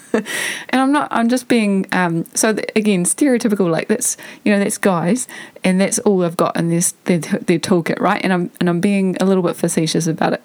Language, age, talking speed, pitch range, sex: English, 30-49, 220 wpm, 175-220 Hz, female